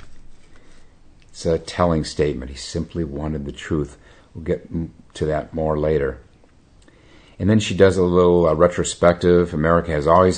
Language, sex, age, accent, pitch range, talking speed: English, male, 50-69, American, 80-90 Hz, 150 wpm